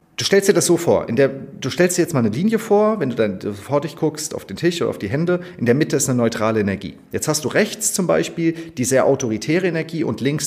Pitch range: 115-170 Hz